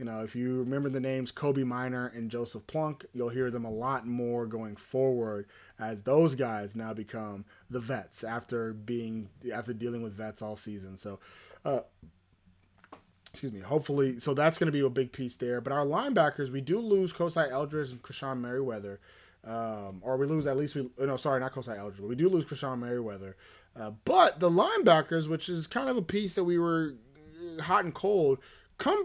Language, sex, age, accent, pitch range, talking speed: English, male, 20-39, American, 110-145 Hz, 195 wpm